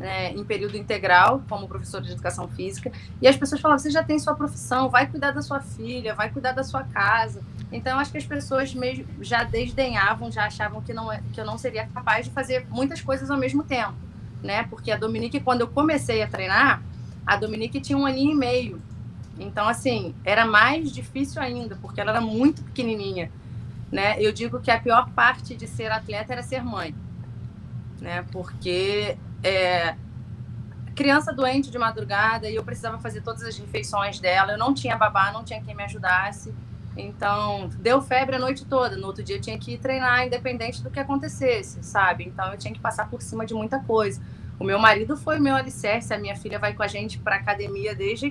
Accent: Brazilian